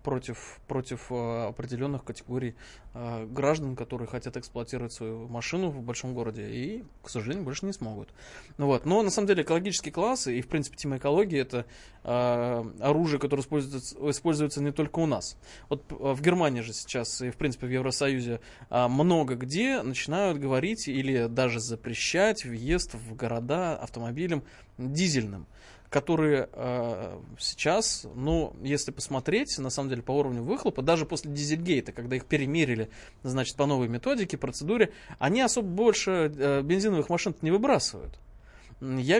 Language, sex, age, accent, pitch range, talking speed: Russian, male, 20-39, native, 120-165 Hz, 150 wpm